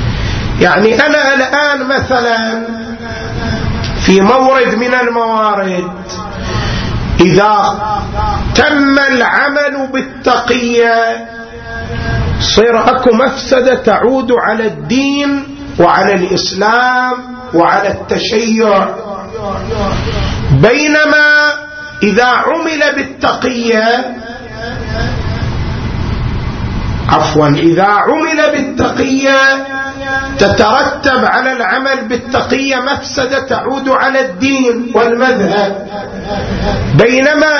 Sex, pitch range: male, 205-270 Hz